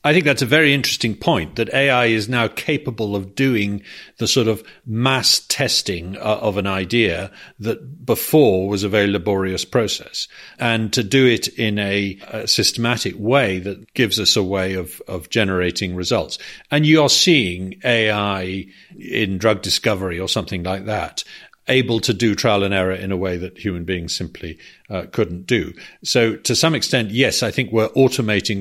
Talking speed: 180 wpm